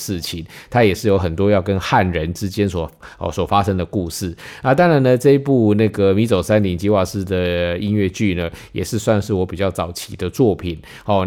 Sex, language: male, Chinese